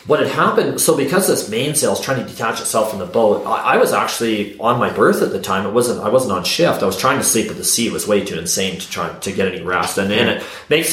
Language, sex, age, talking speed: English, male, 30-49, 290 wpm